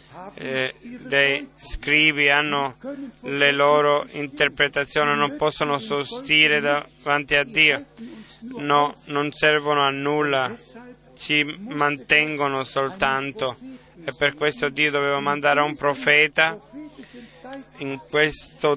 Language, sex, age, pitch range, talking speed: Italian, male, 30-49, 140-150 Hz, 100 wpm